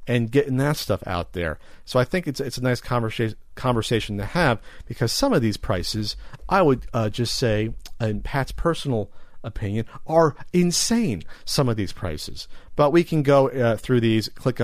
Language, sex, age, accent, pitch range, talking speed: English, male, 40-59, American, 110-150 Hz, 185 wpm